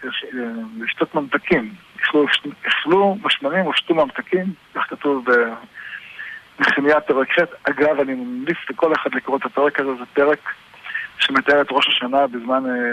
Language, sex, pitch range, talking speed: Hebrew, male, 135-175 Hz, 130 wpm